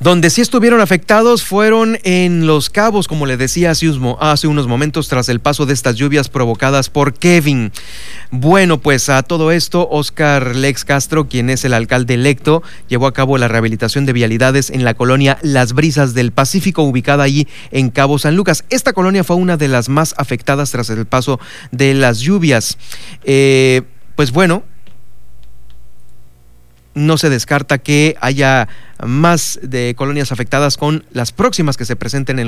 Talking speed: 165 wpm